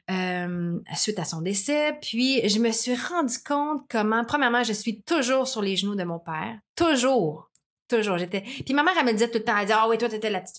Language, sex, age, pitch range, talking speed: French, female, 30-49, 190-230 Hz, 245 wpm